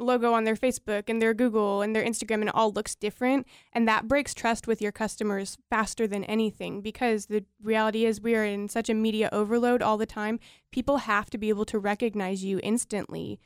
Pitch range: 205-225 Hz